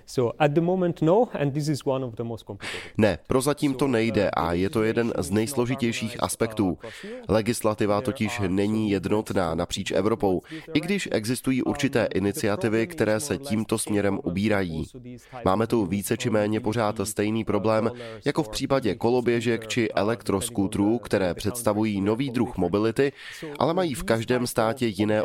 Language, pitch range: Czech, 105-125 Hz